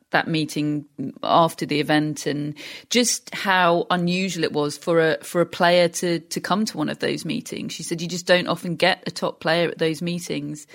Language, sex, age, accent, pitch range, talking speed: English, female, 30-49, British, 160-180 Hz, 205 wpm